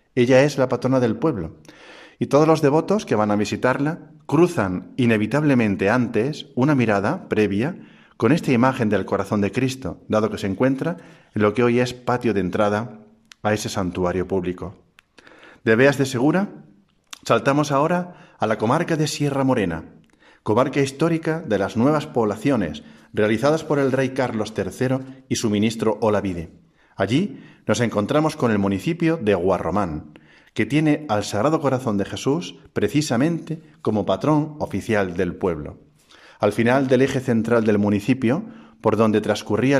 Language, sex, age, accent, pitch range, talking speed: Spanish, male, 40-59, Spanish, 105-140 Hz, 155 wpm